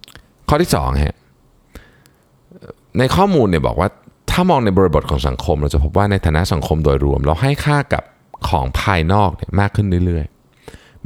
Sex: male